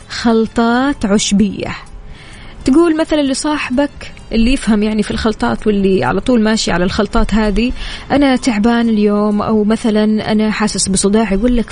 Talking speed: 135 wpm